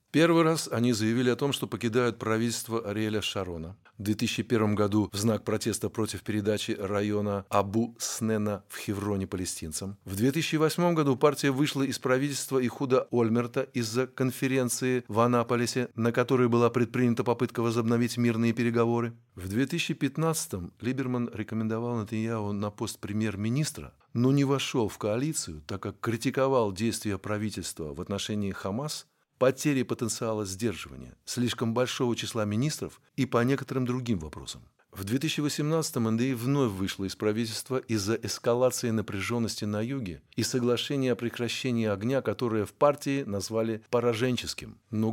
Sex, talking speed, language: male, 135 wpm, Russian